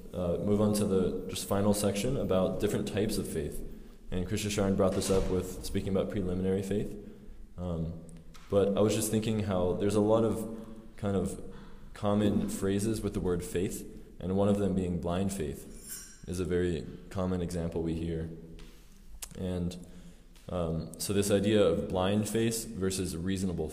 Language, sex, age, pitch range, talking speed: English, male, 20-39, 85-105 Hz, 170 wpm